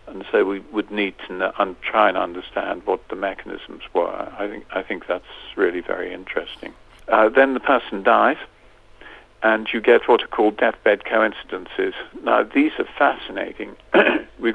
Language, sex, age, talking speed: English, male, 50-69, 165 wpm